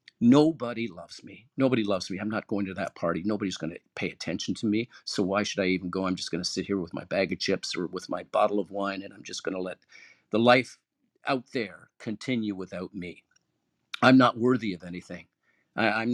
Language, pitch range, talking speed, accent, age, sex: English, 95-125 Hz, 225 wpm, American, 50-69, male